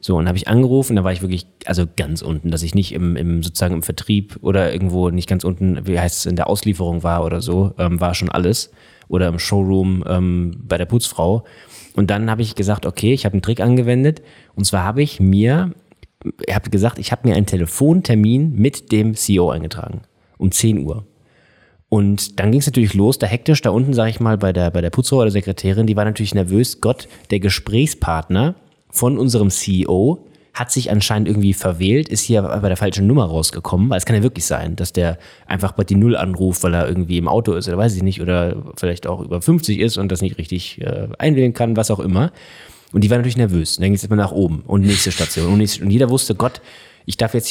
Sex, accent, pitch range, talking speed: male, German, 90-115 Hz, 225 wpm